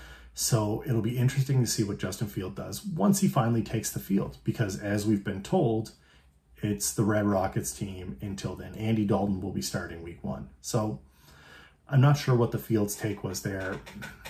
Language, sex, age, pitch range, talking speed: English, male, 30-49, 90-120 Hz, 190 wpm